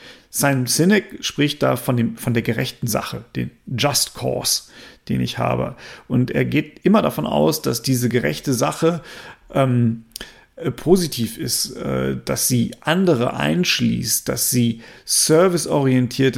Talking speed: 130 wpm